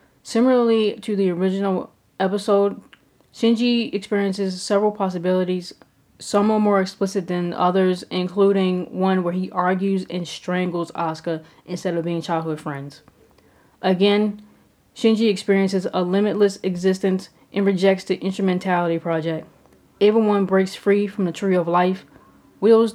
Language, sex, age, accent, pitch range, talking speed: English, female, 20-39, American, 180-205 Hz, 130 wpm